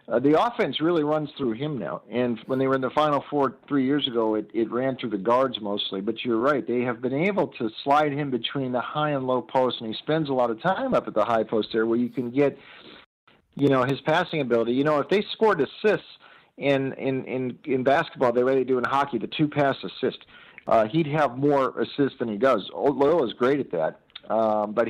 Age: 50-69